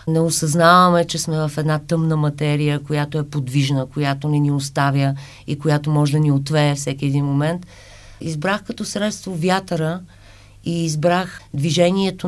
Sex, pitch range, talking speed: female, 145-175 Hz, 150 wpm